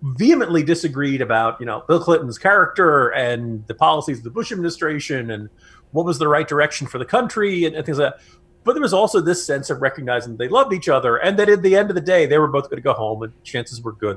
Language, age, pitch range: English, 40-59, 125-160 Hz